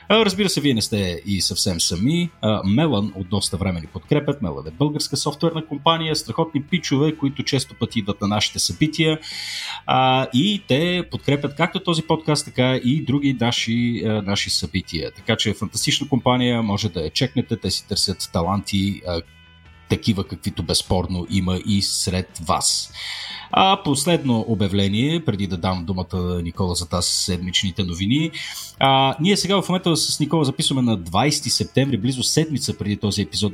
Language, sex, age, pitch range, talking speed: Bulgarian, male, 40-59, 95-135 Hz, 160 wpm